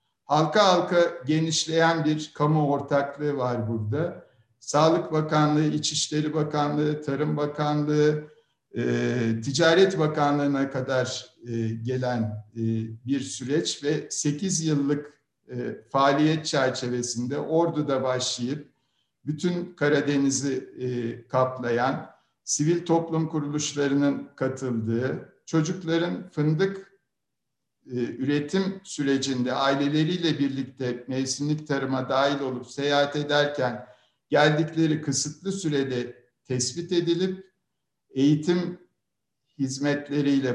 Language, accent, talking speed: Turkish, native, 80 wpm